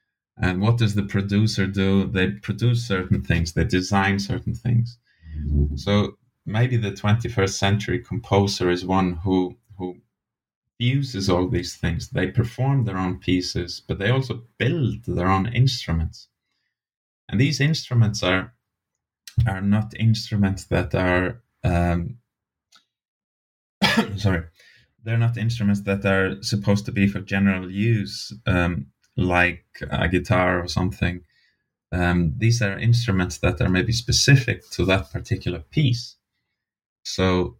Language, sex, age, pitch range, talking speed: English, male, 30-49, 95-115 Hz, 130 wpm